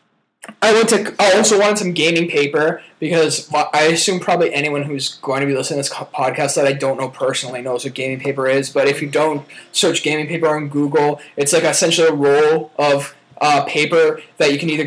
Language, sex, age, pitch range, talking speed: English, male, 20-39, 140-170 Hz, 215 wpm